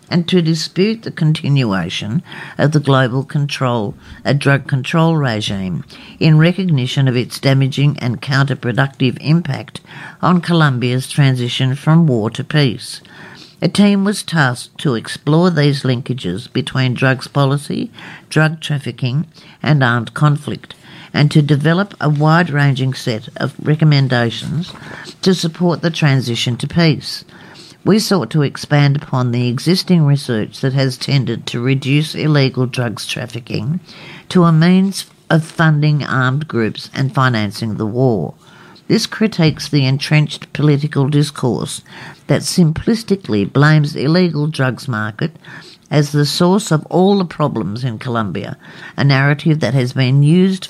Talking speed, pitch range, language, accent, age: 135 wpm, 130-165 Hz, English, Australian, 50-69